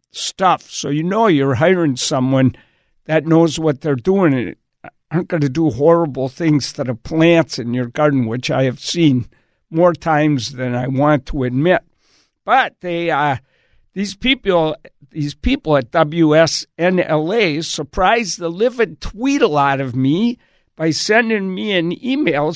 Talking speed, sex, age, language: 155 wpm, male, 60-79, English